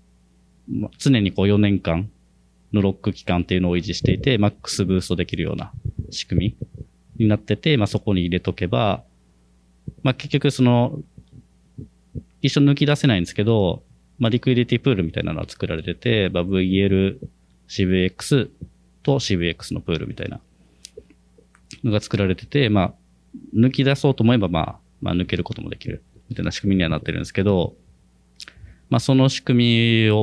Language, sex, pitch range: Japanese, male, 80-120 Hz